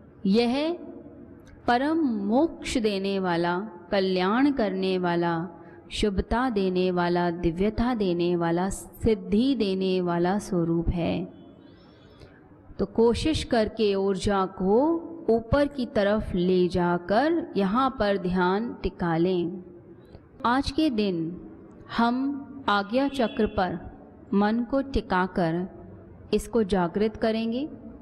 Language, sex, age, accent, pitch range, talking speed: Hindi, female, 30-49, native, 185-235 Hz, 100 wpm